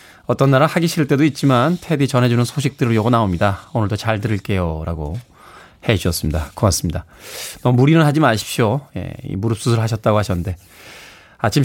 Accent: native